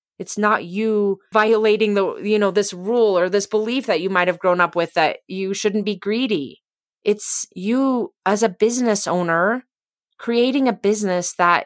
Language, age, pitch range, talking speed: English, 30-49, 180-220 Hz, 175 wpm